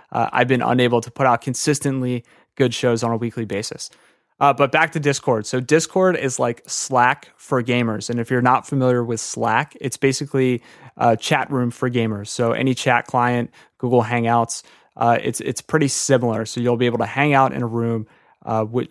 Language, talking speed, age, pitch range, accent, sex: English, 195 wpm, 20-39, 115-140 Hz, American, male